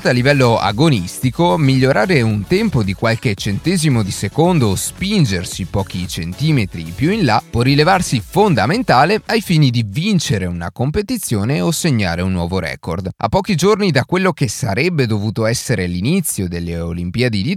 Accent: native